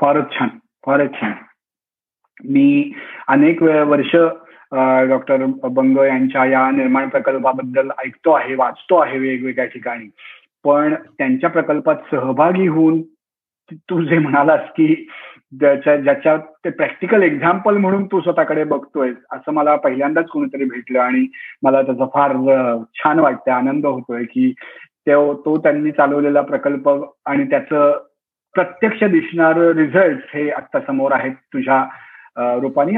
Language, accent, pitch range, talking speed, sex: Marathi, native, 135-175 Hz, 120 wpm, male